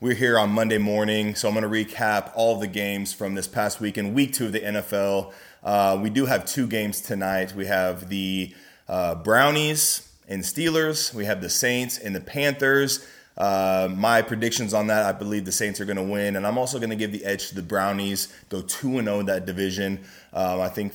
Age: 20-39